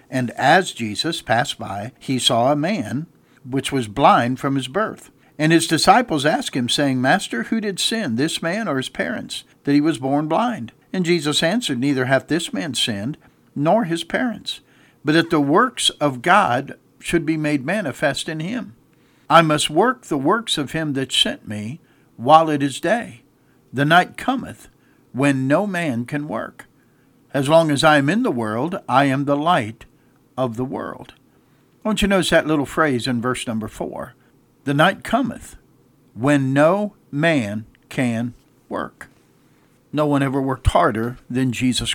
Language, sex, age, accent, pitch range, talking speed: English, male, 60-79, American, 125-160 Hz, 170 wpm